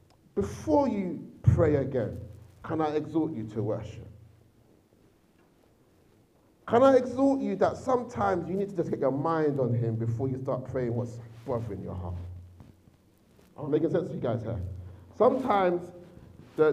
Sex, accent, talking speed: male, British, 155 wpm